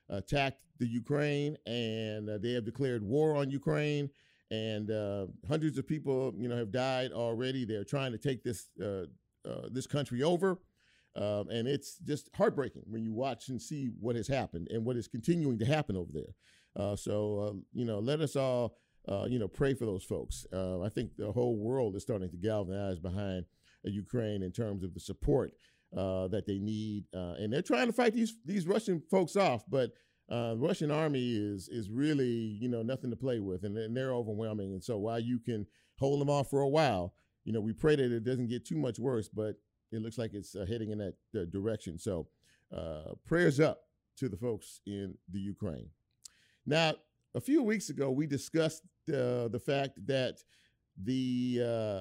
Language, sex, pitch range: English, male, 105-140 Hz